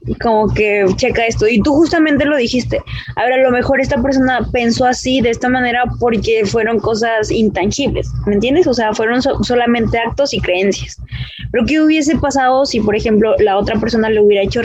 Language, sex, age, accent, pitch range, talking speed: Spanish, female, 20-39, Mexican, 210-260 Hz, 200 wpm